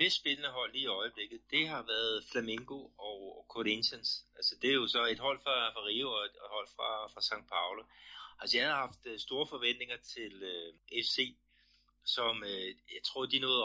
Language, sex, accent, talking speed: Danish, male, native, 200 wpm